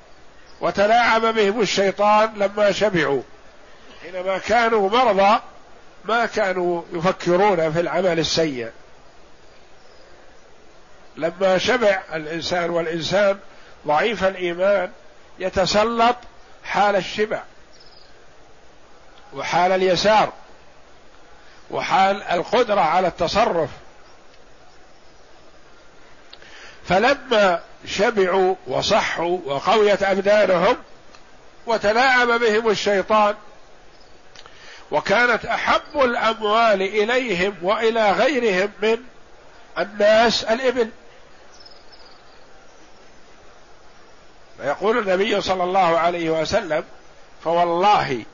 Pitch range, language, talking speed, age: 180-220 Hz, Arabic, 65 wpm, 50-69